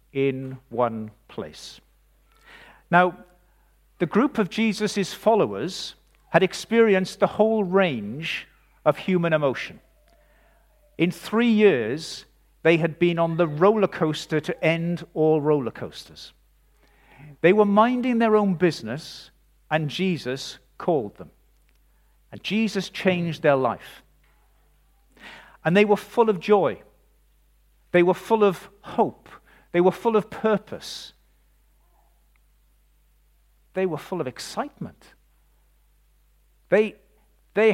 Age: 50-69